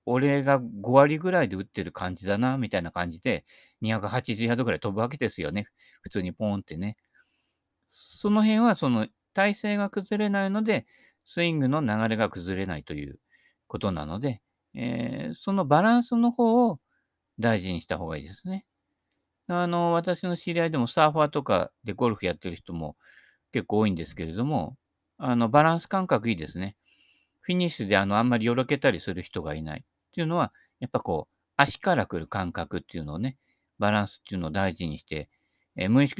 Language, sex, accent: Japanese, male, native